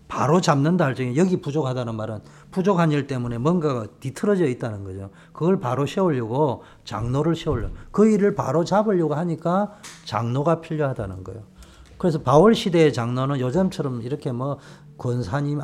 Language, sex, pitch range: Korean, male, 120-170 Hz